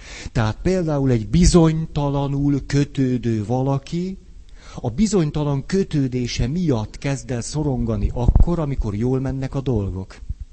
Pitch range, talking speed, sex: 90-145 Hz, 110 wpm, male